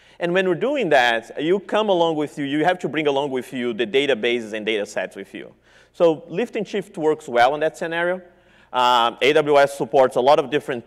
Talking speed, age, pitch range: 220 wpm, 30-49, 125-175 Hz